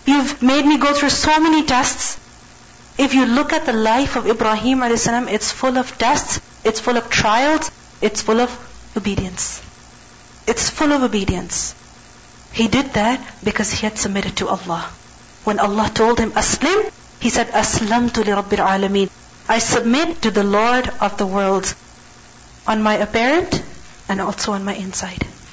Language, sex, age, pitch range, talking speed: English, female, 40-59, 205-250 Hz, 160 wpm